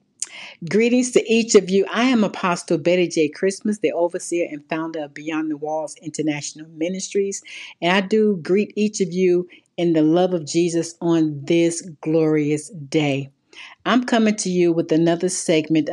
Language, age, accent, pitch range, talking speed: English, 50-69, American, 155-185 Hz, 165 wpm